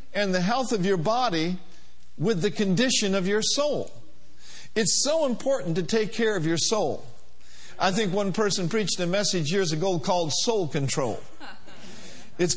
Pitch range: 165-220 Hz